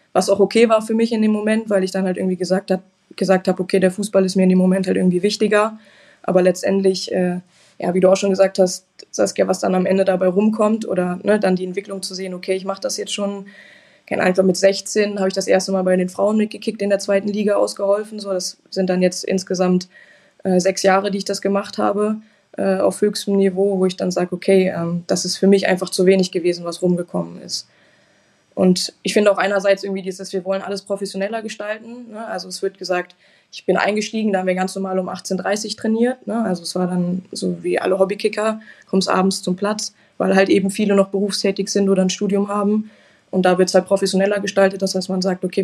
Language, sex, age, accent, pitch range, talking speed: German, female, 20-39, German, 185-200 Hz, 230 wpm